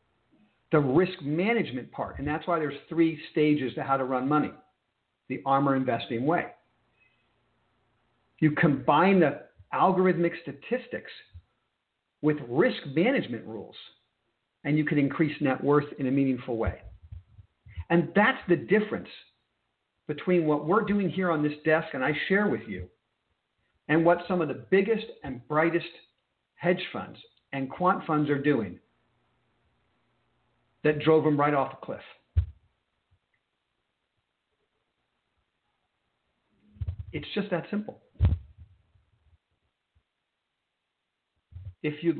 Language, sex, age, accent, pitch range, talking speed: English, male, 50-69, American, 115-165 Hz, 120 wpm